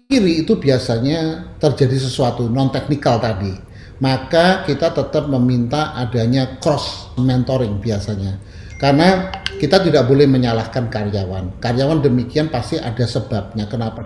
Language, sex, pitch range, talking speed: Indonesian, male, 120-145 Hz, 120 wpm